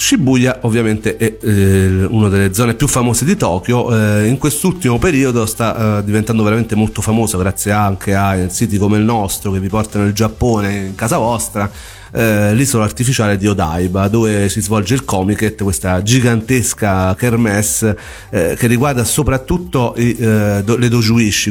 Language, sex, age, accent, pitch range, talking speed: Italian, male, 40-59, native, 105-120 Hz, 160 wpm